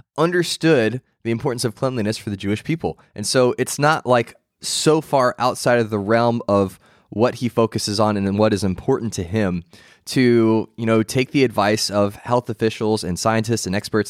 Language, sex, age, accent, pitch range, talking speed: English, male, 20-39, American, 105-130 Hz, 190 wpm